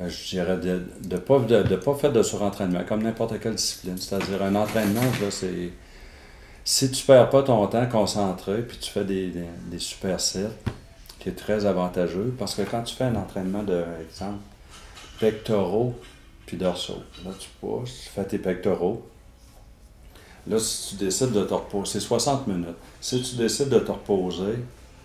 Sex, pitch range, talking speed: male, 90-110 Hz, 180 wpm